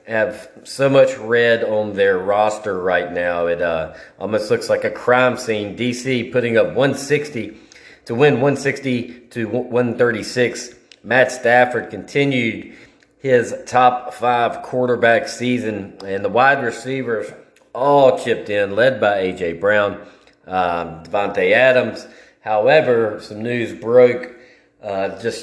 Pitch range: 105-130 Hz